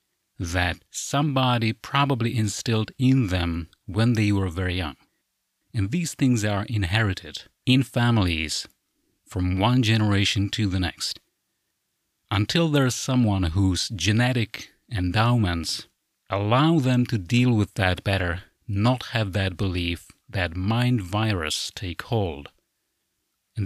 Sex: male